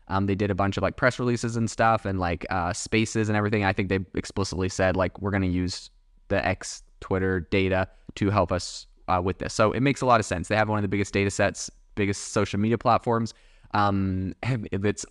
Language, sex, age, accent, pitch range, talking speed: English, male, 20-39, American, 95-115 Hz, 230 wpm